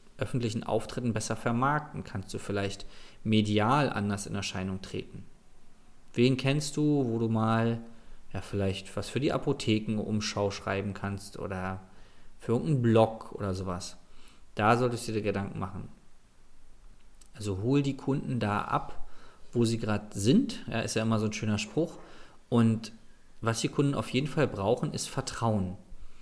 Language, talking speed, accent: German, 155 wpm, German